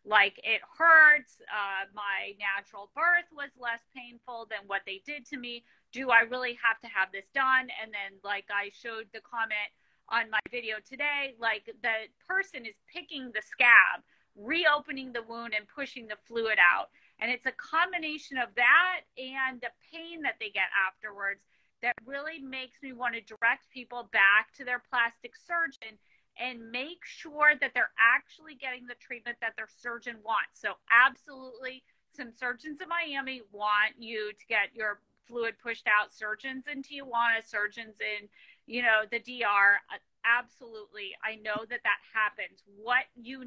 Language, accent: English, American